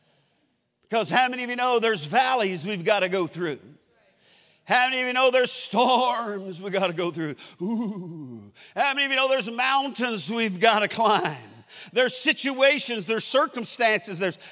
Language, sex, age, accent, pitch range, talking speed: English, male, 50-69, American, 225-315 Hz, 170 wpm